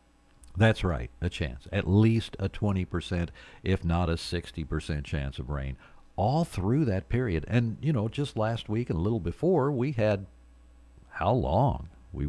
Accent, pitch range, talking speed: American, 75-105 Hz, 165 wpm